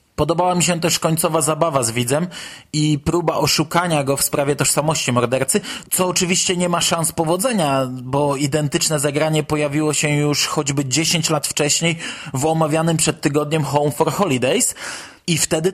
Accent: native